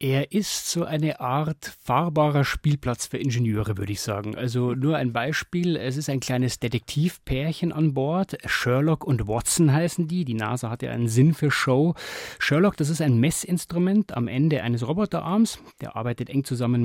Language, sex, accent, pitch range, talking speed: German, male, German, 125-170 Hz, 175 wpm